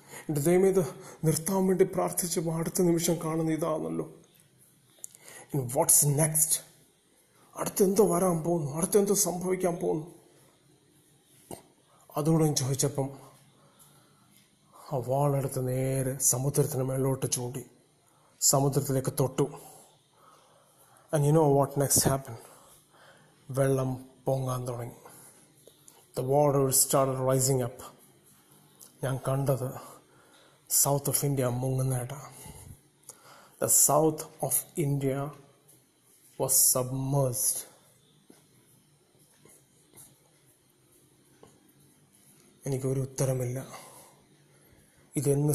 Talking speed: 65 wpm